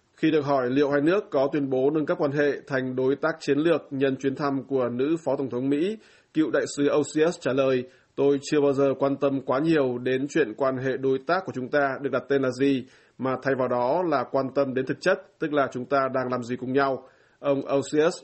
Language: Vietnamese